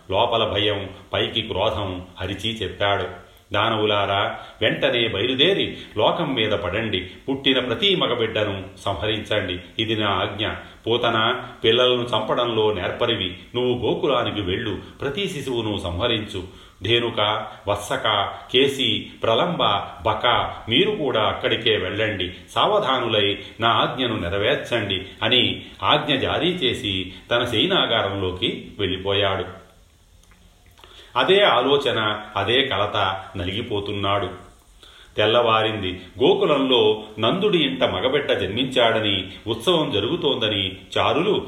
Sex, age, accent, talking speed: male, 40-59, native, 90 wpm